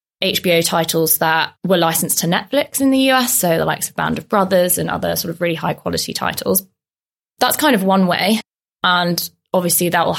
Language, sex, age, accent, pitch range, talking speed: English, female, 20-39, British, 165-200 Hz, 200 wpm